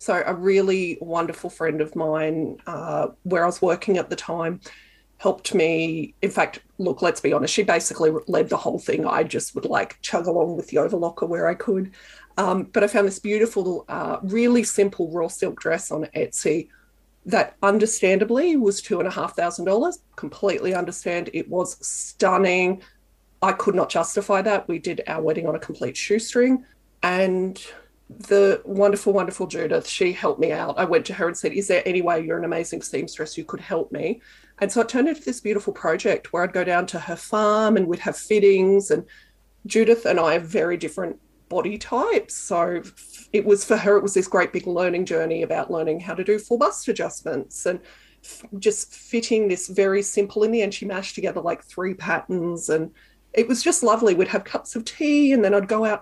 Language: English